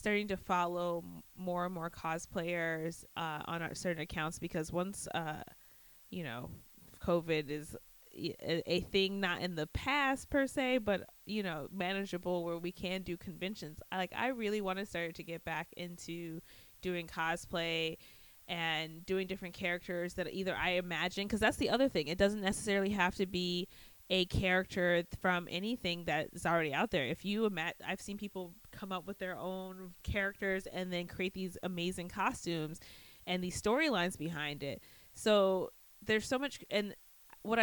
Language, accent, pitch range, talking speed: English, American, 170-195 Hz, 165 wpm